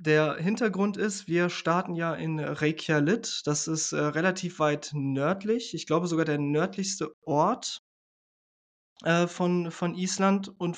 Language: German